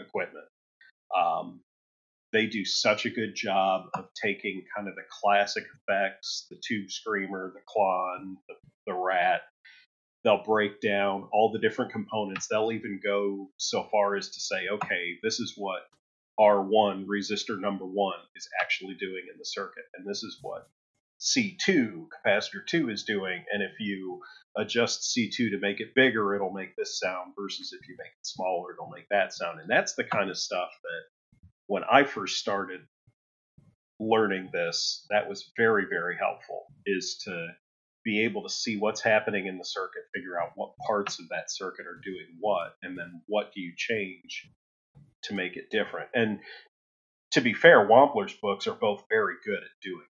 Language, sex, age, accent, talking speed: English, male, 40-59, American, 170 wpm